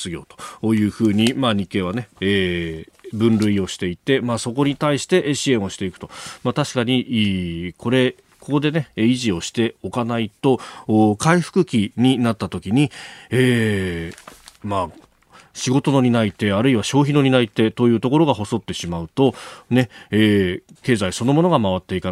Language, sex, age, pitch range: Japanese, male, 40-59, 100-135 Hz